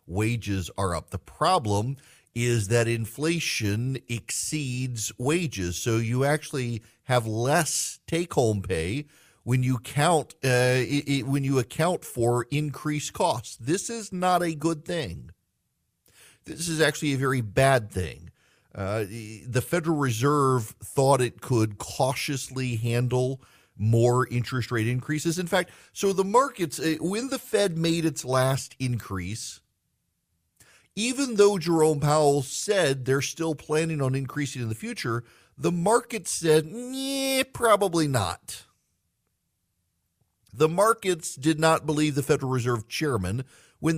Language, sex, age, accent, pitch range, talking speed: English, male, 50-69, American, 120-160 Hz, 130 wpm